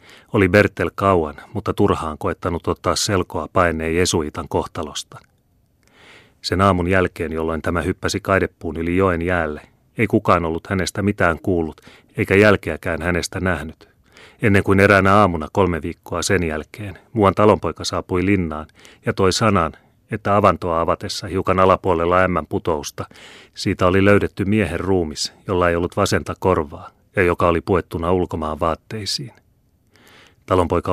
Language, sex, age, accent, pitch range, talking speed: Finnish, male, 30-49, native, 85-100 Hz, 135 wpm